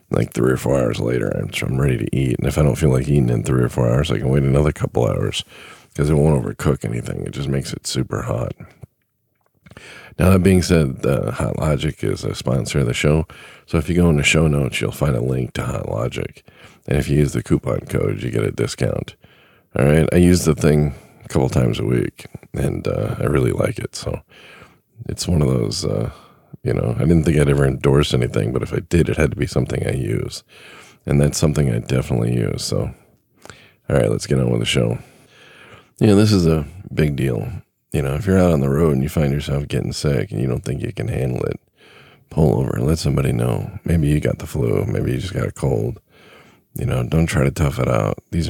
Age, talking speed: 40-59, 235 wpm